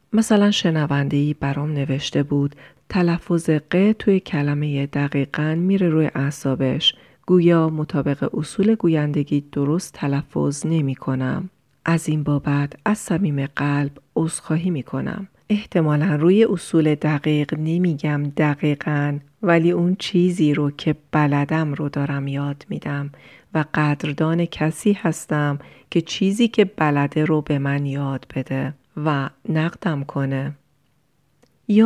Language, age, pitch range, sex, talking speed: Persian, 40-59, 145-170 Hz, female, 120 wpm